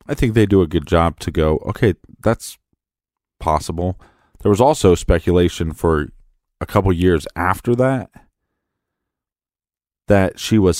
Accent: American